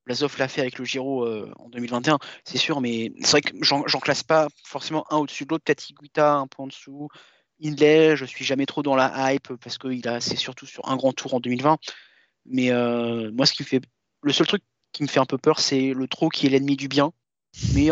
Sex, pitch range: male, 135-165 Hz